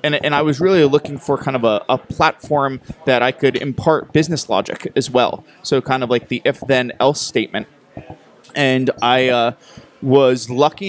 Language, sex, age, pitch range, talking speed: English, male, 20-39, 125-145 Hz, 175 wpm